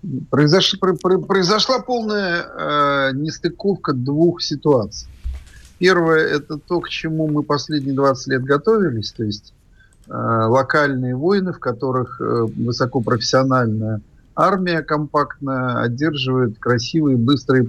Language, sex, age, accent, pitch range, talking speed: Russian, male, 50-69, native, 120-160 Hz, 100 wpm